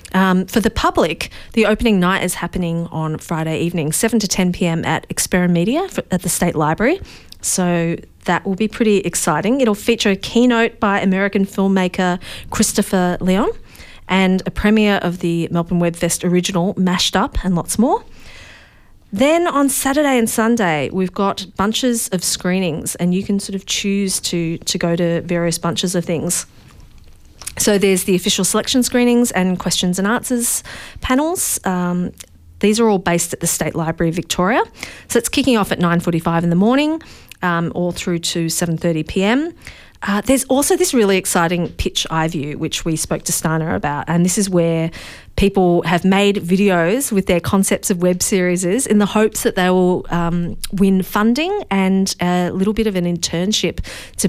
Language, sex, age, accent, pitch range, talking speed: English, female, 40-59, Australian, 170-210 Hz, 175 wpm